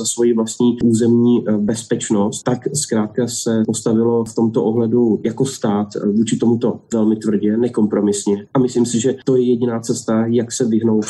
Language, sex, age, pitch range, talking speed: Slovak, male, 20-39, 110-125 Hz, 160 wpm